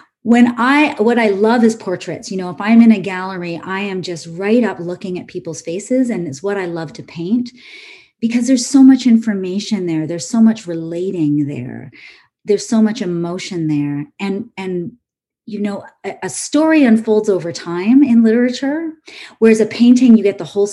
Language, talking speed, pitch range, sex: English, 190 wpm, 175-230 Hz, female